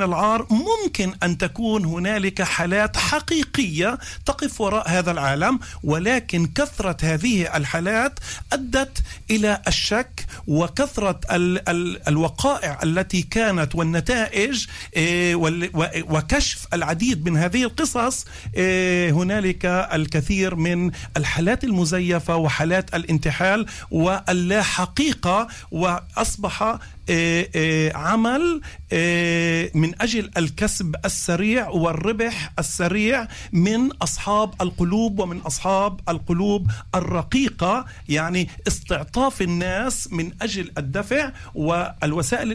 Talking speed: 85 wpm